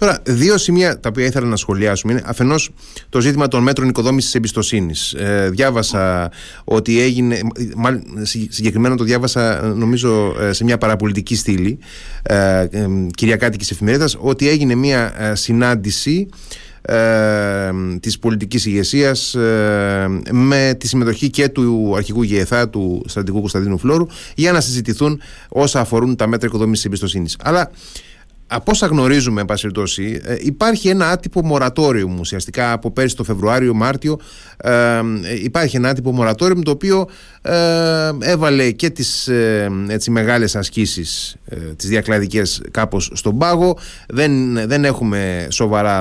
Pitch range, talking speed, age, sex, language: 105-140 Hz, 130 wpm, 30-49, male, Greek